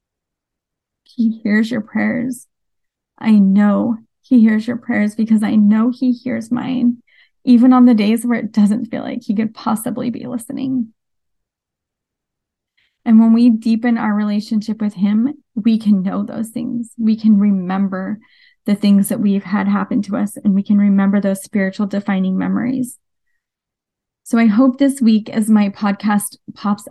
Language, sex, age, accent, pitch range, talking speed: English, female, 30-49, American, 205-240 Hz, 160 wpm